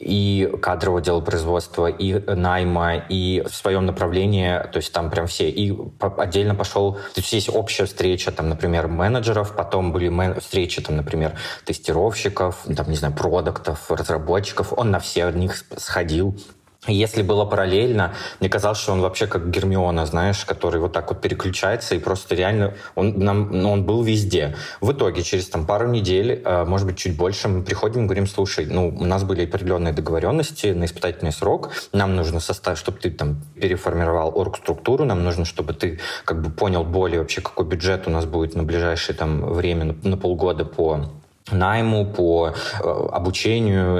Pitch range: 85-100 Hz